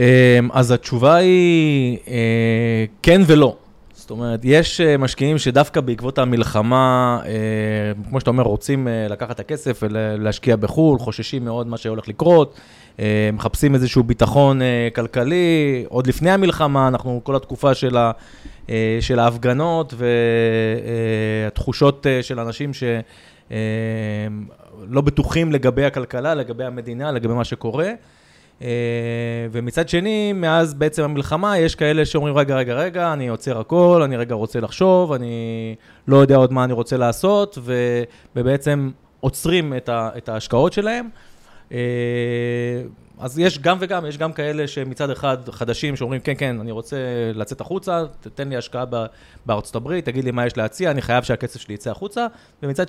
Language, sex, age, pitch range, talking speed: Hebrew, male, 20-39, 115-150 Hz, 135 wpm